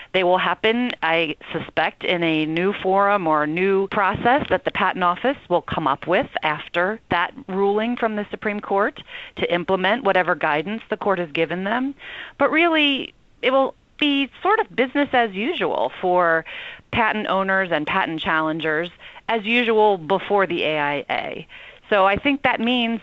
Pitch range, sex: 175-230 Hz, female